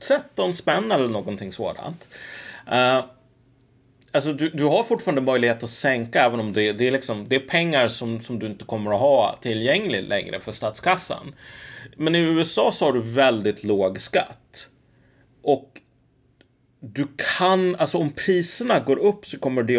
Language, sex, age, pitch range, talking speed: Swedish, male, 30-49, 115-145 Hz, 150 wpm